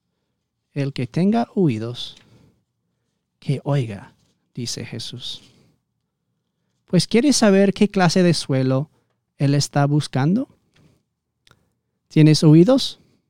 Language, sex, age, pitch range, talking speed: Spanish, male, 40-59, 145-185 Hz, 90 wpm